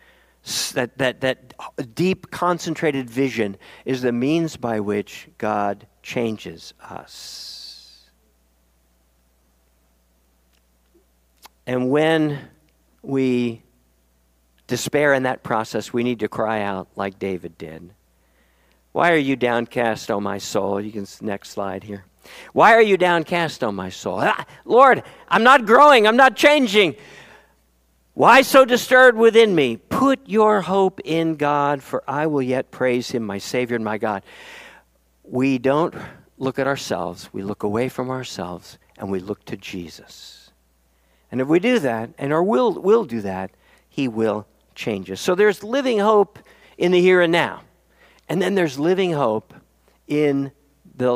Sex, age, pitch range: male, 50-69, 95-160 Hz